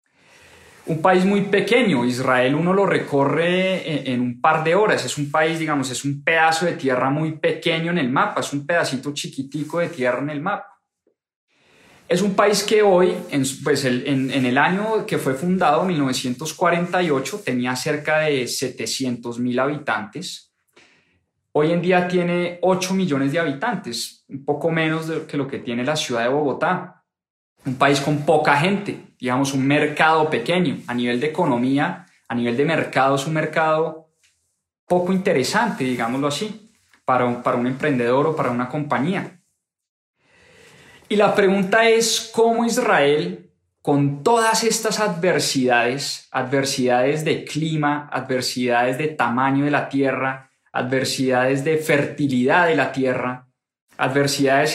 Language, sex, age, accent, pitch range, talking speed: English, male, 20-39, Colombian, 130-175 Hz, 150 wpm